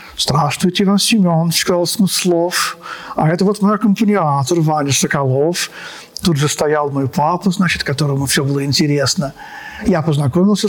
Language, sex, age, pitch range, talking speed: Russian, male, 50-69, 150-185 Hz, 135 wpm